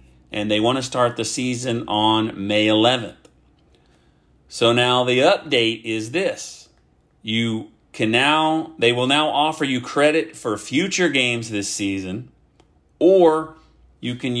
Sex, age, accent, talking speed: male, 40-59, American, 140 wpm